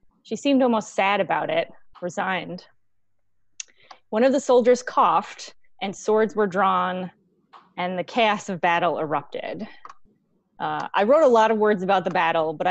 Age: 20-39